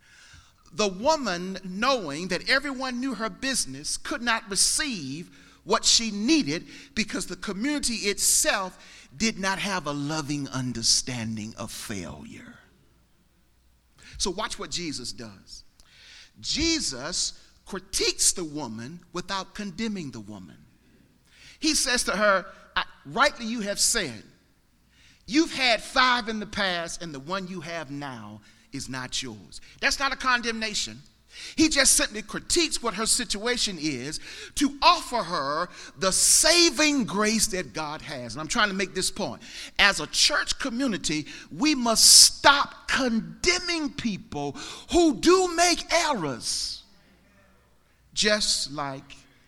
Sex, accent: male, American